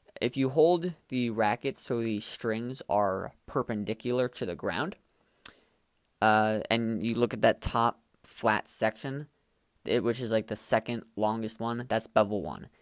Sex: male